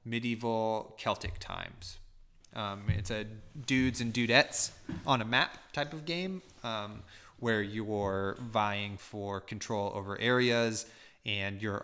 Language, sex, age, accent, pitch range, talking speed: English, male, 20-39, American, 100-115 Hz, 130 wpm